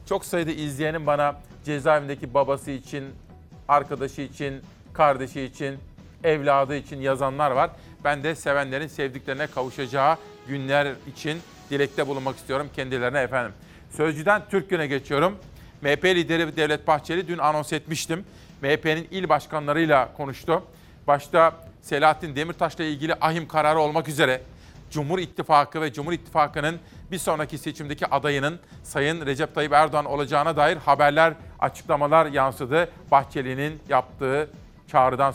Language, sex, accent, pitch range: Turkish, male, native, 140-160 Hz